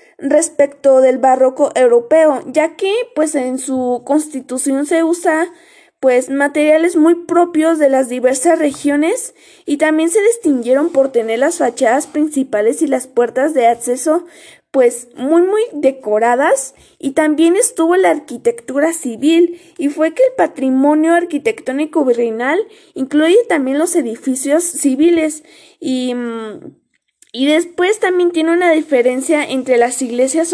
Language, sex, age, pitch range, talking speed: Spanish, female, 20-39, 260-335 Hz, 130 wpm